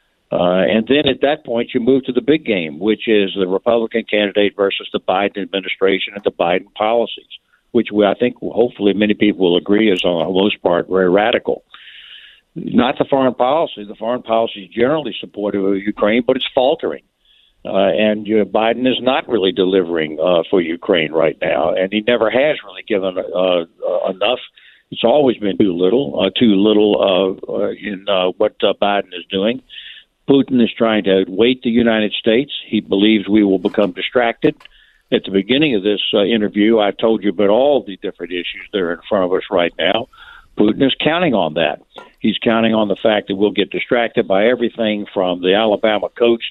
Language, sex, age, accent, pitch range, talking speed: English, male, 60-79, American, 100-120 Hz, 190 wpm